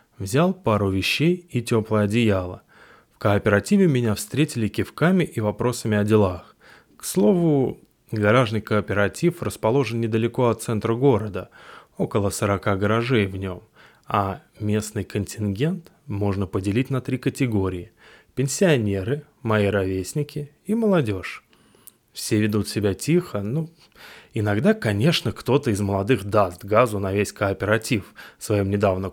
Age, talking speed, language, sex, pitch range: 20-39, 120 wpm, Russian, male, 100-140 Hz